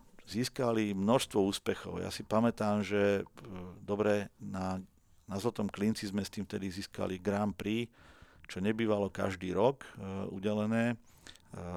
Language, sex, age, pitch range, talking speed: Slovak, male, 50-69, 95-110 Hz, 125 wpm